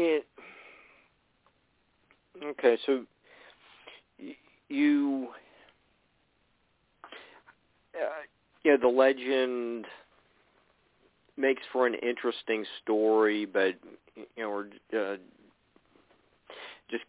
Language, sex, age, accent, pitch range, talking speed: English, male, 50-69, American, 105-125 Hz, 65 wpm